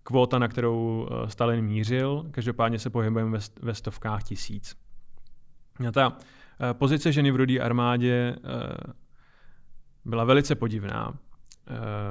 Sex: male